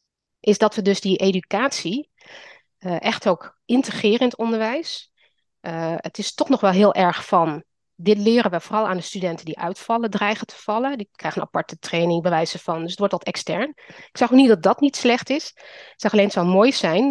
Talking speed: 225 wpm